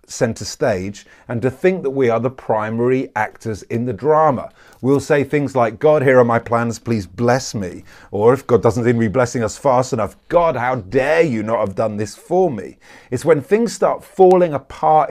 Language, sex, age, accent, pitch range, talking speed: English, male, 30-49, British, 115-155 Hz, 210 wpm